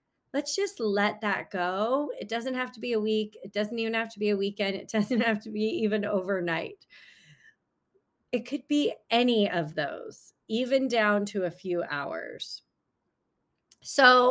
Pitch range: 190-250 Hz